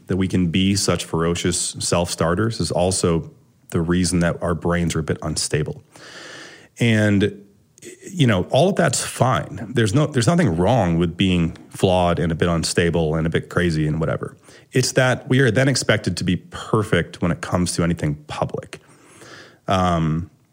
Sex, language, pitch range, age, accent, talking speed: male, English, 85-115 Hz, 30-49, American, 170 wpm